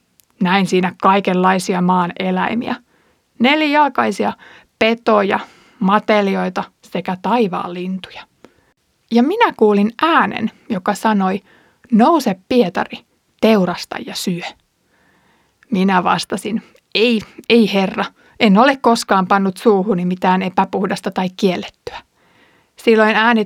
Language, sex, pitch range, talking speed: Finnish, female, 195-235 Hz, 95 wpm